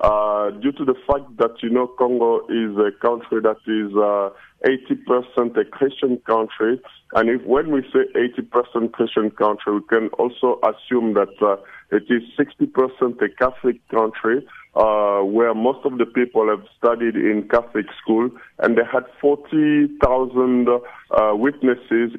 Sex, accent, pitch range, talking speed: male, French, 110-130 Hz, 150 wpm